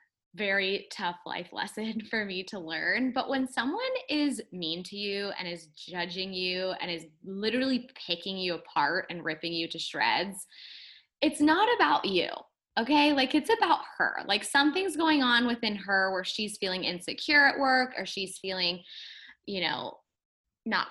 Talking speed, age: 165 wpm, 10-29